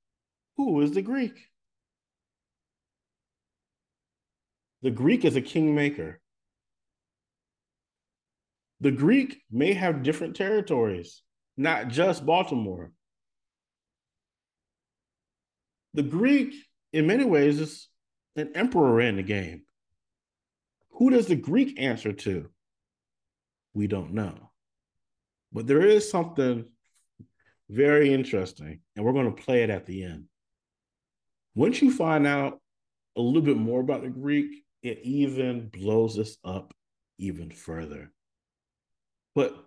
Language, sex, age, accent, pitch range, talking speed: English, male, 40-59, American, 105-145 Hz, 110 wpm